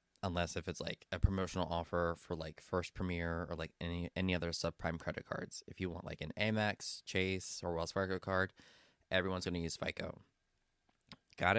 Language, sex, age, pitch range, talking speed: English, male, 20-39, 90-110 Hz, 185 wpm